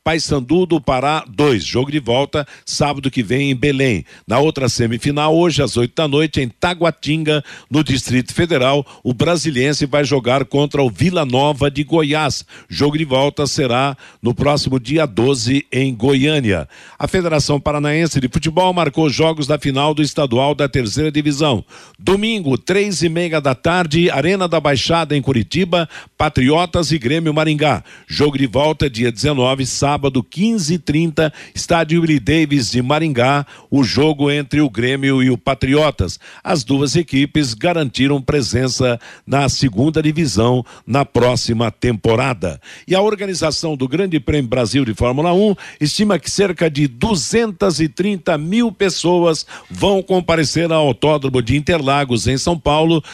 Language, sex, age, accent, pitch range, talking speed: Portuguese, male, 60-79, Brazilian, 135-165 Hz, 150 wpm